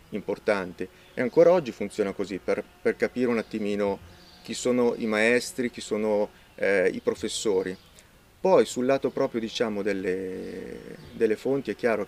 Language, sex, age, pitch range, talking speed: Italian, male, 30-49, 105-130 Hz, 150 wpm